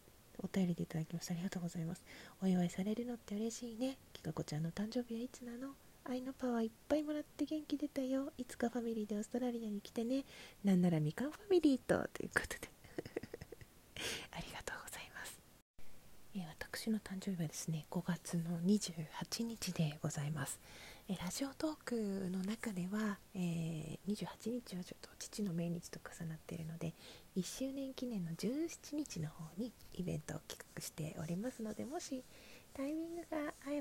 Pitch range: 175-235 Hz